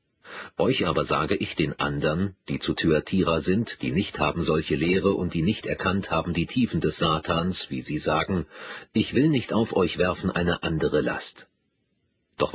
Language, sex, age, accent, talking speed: German, male, 40-59, German, 175 wpm